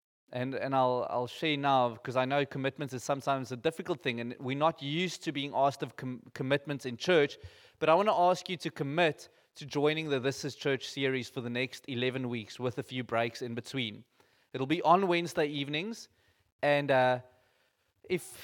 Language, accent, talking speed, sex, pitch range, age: English, South African, 200 wpm, male, 125-160 Hz, 20-39